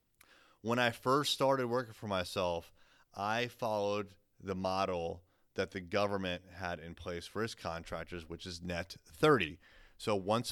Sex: male